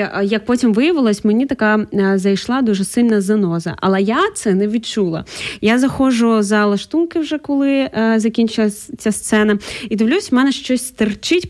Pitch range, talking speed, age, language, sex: 195-235 Hz, 160 wpm, 20-39, Ukrainian, female